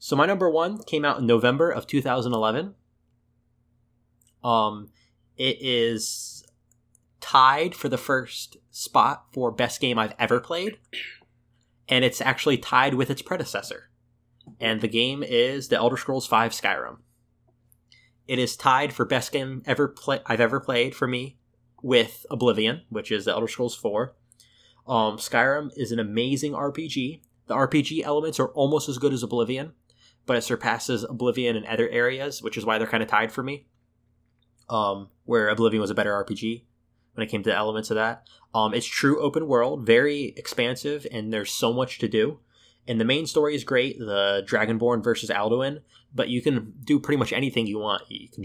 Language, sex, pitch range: English, male, 115-135 Hz